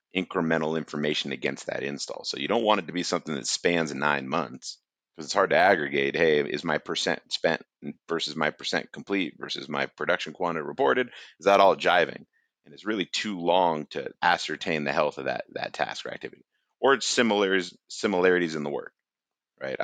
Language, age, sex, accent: English, 30-49, male, American